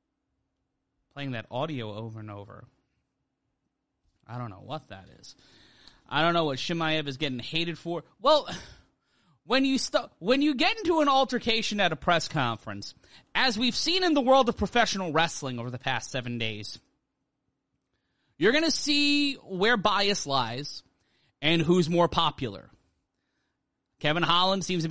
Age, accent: 30-49, American